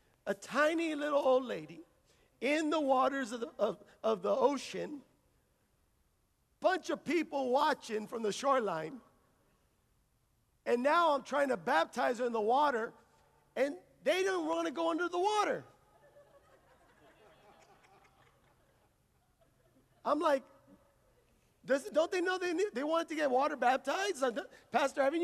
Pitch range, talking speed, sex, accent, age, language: 250-320 Hz, 135 wpm, male, American, 50-69, English